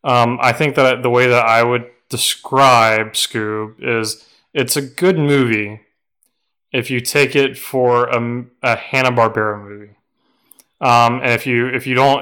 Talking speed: 155 wpm